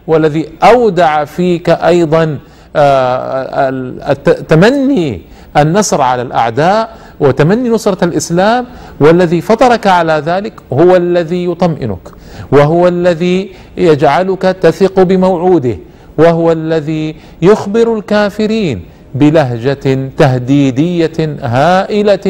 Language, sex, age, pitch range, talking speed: Arabic, male, 50-69, 130-185 Hz, 80 wpm